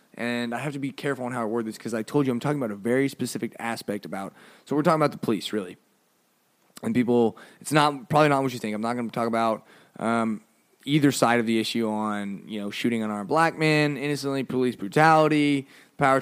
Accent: American